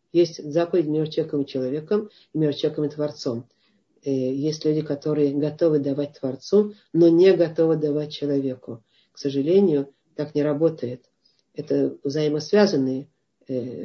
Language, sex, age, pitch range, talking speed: Russian, female, 50-69, 145-175 Hz, 120 wpm